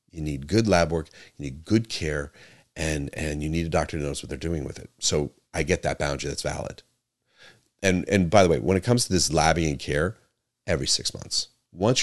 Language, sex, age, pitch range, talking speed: English, male, 30-49, 70-90 Hz, 230 wpm